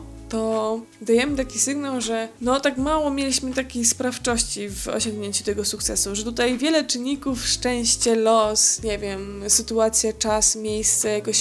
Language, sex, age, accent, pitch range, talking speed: Polish, female, 20-39, native, 210-250 Hz, 140 wpm